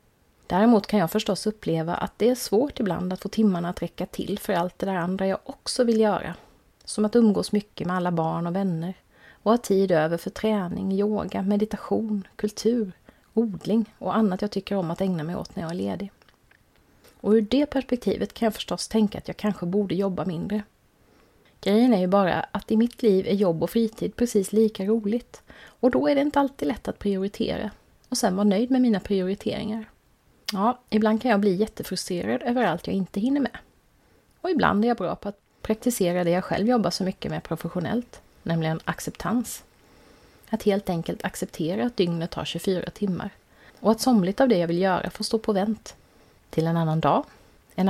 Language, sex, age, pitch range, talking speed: Swedish, female, 30-49, 185-225 Hz, 200 wpm